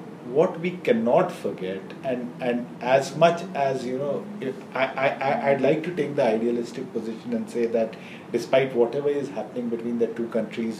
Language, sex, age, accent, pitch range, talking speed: English, male, 40-59, Indian, 115-150 Hz, 180 wpm